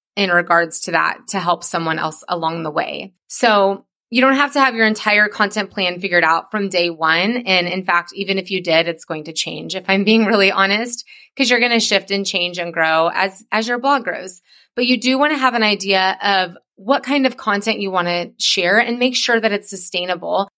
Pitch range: 175-225 Hz